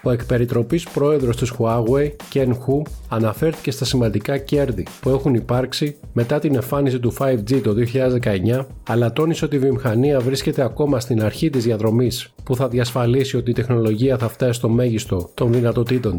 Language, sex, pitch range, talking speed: Greek, male, 120-145 Hz, 165 wpm